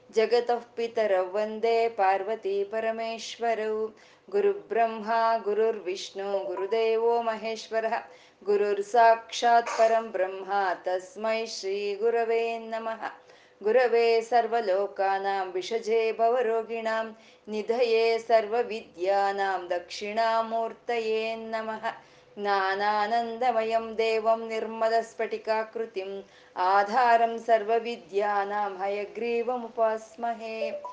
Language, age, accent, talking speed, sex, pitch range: Kannada, 20-39, native, 55 wpm, female, 210-235 Hz